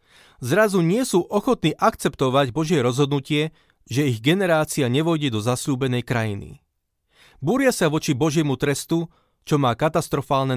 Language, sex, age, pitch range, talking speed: Slovak, male, 30-49, 135-170 Hz, 125 wpm